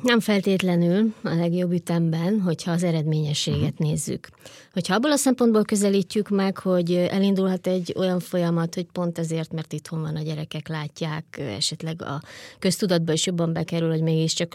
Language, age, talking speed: Hungarian, 20-39, 155 wpm